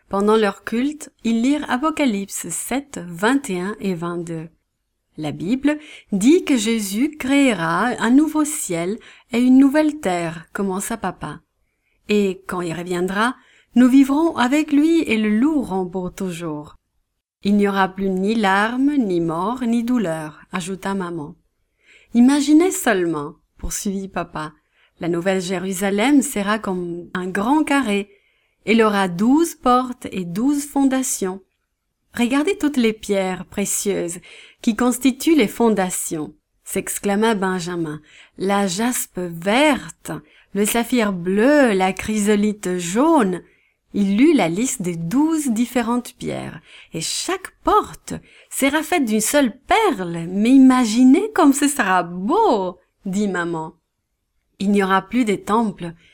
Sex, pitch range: female, 185-260 Hz